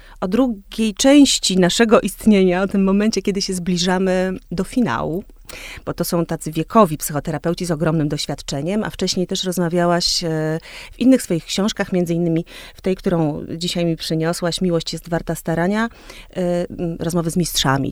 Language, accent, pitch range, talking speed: Polish, native, 155-195 Hz, 150 wpm